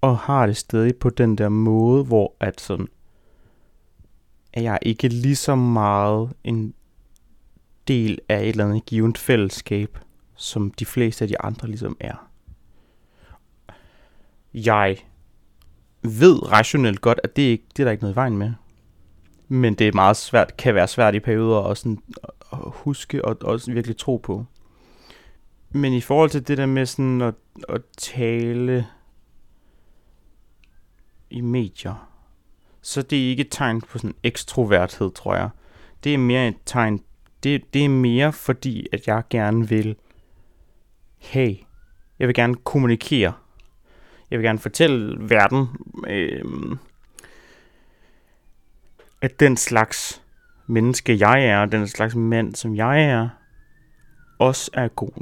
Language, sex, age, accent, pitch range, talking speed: Danish, male, 30-49, native, 105-130 Hz, 145 wpm